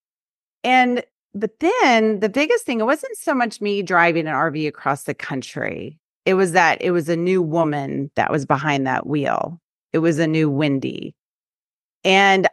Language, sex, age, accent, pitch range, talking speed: English, female, 30-49, American, 160-225 Hz, 170 wpm